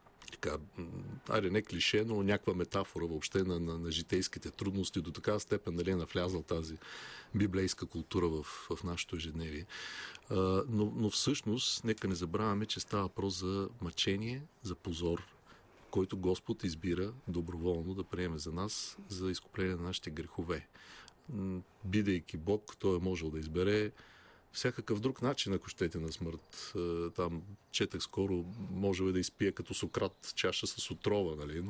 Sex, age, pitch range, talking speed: male, 40-59, 85-100 Hz, 150 wpm